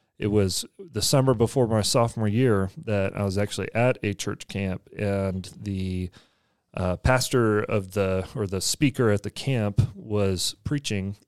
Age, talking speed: 30-49, 160 wpm